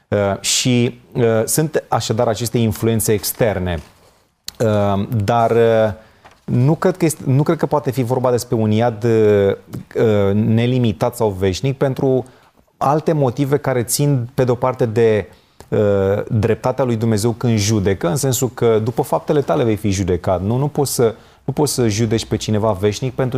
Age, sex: 30-49, male